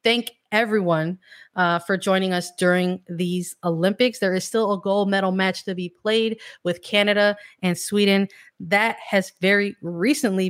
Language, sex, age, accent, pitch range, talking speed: English, female, 20-39, American, 170-195 Hz, 155 wpm